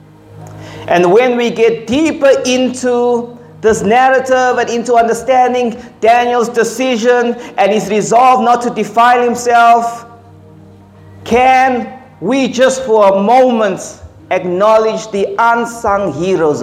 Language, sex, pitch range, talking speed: English, male, 155-245 Hz, 110 wpm